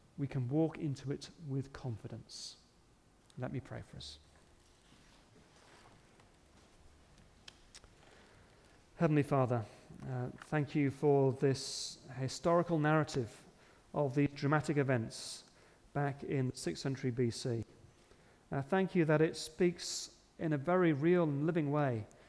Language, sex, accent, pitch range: English, male, British, 125-150 Hz